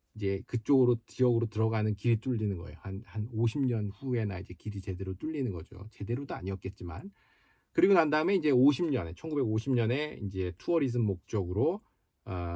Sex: male